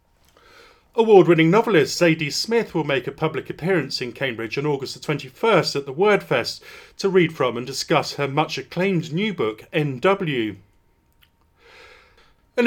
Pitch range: 135-185 Hz